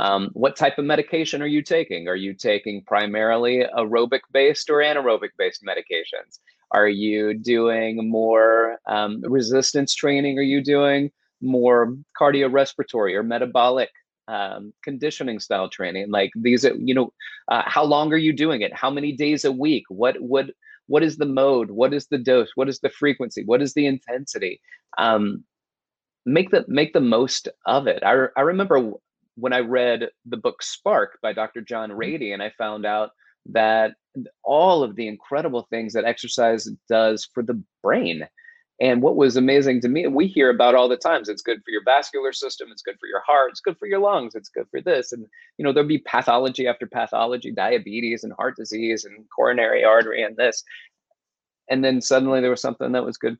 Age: 30-49